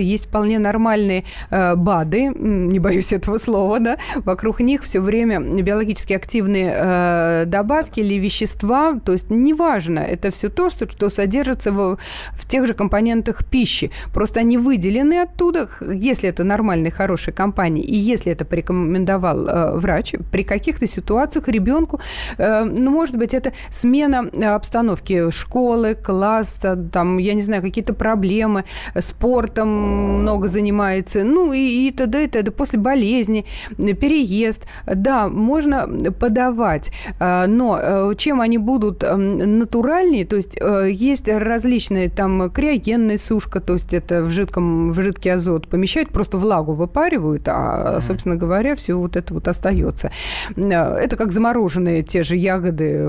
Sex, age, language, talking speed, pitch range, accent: female, 30-49, Russian, 140 wpm, 185-235 Hz, native